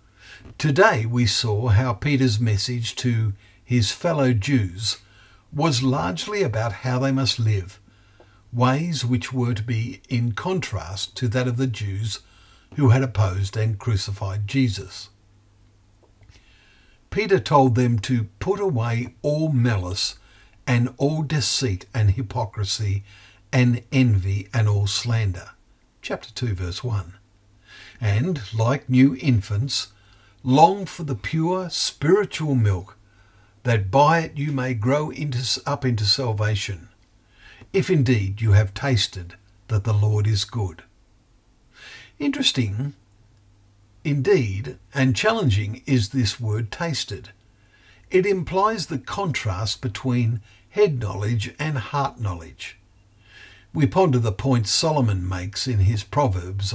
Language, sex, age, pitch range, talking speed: English, male, 60-79, 100-130 Hz, 120 wpm